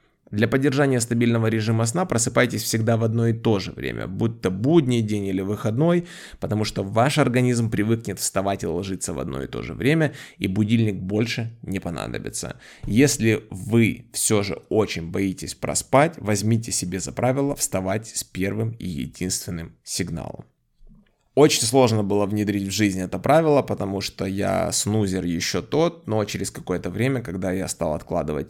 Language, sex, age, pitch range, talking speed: Ukrainian, male, 20-39, 95-120 Hz, 160 wpm